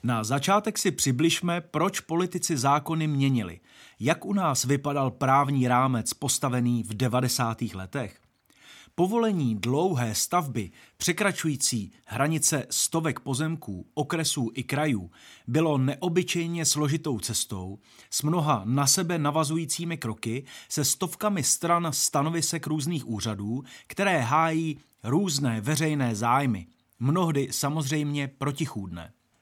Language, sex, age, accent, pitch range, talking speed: Czech, male, 30-49, native, 125-165 Hz, 105 wpm